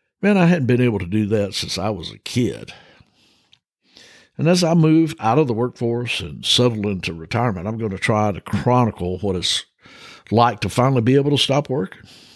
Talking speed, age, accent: 200 wpm, 60-79, American